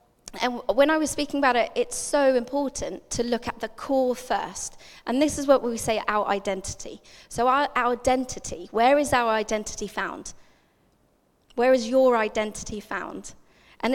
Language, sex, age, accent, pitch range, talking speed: English, female, 20-39, British, 215-260 Hz, 170 wpm